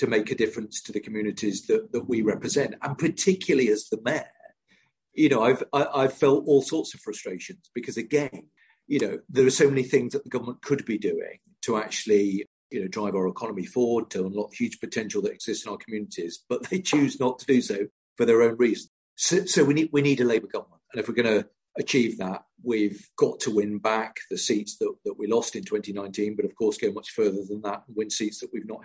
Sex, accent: male, British